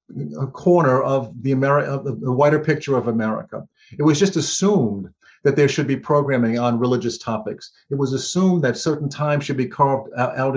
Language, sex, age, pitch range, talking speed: English, male, 50-69, 120-150 Hz, 185 wpm